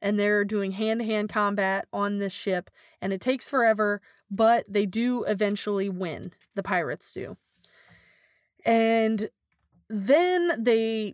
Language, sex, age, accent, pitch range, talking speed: English, female, 20-39, American, 195-235 Hz, 125 wpm